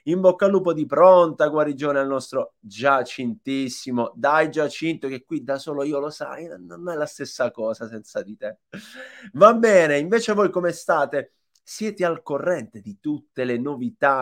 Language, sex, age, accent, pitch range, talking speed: Italian, male, 30-49, native, 120-155 Hz, 170 wpm